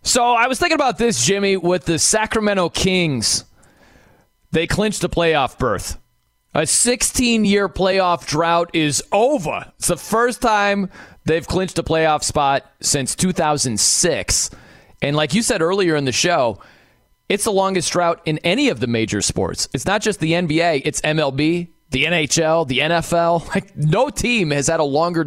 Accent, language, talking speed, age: American, English, 165 wpm, 30-49